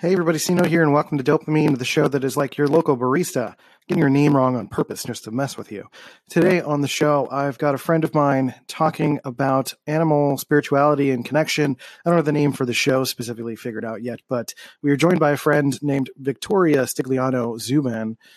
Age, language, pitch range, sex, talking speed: 30-49, English, 130-155 Hz, male, 210 wpm